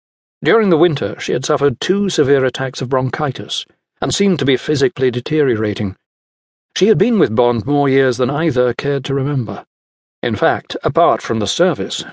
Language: English